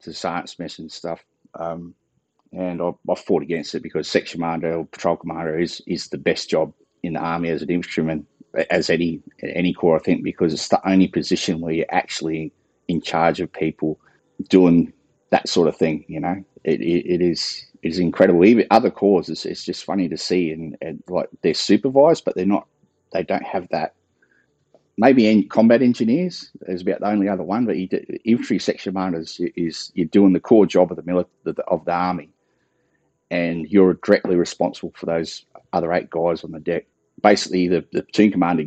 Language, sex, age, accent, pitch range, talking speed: English, male, 30-49, Australian, 80-95 Hz, 195 wpm